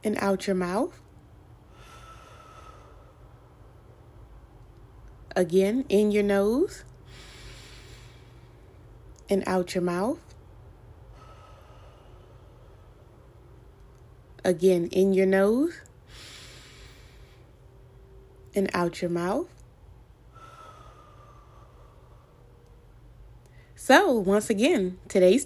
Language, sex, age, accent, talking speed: English, female, 20-39, American, 55 wpm